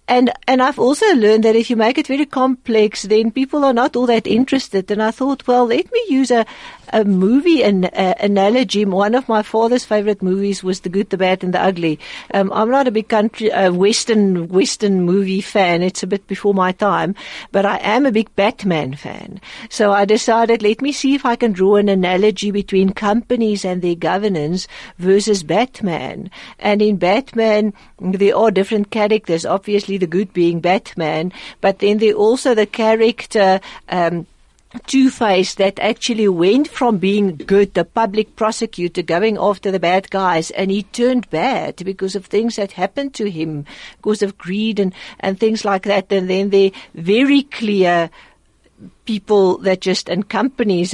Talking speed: 180 wpm